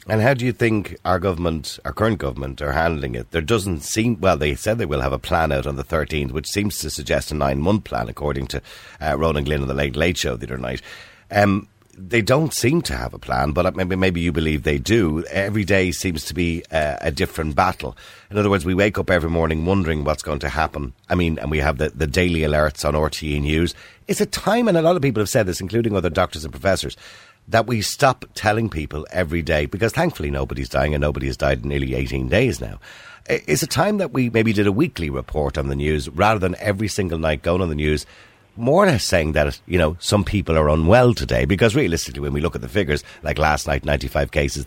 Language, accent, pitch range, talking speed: English, Irish, 75-105 Hz, 240 wpm